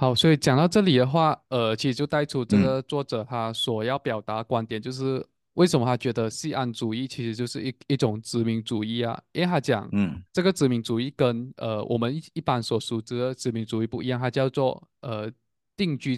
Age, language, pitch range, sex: 20-39, Chinese, 115-145 Hz, male